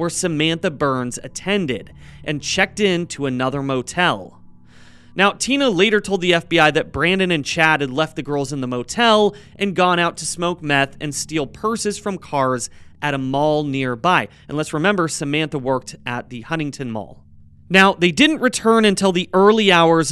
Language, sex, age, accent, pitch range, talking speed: English, male, 30-49, American, 140-200 Hz, 175 wpm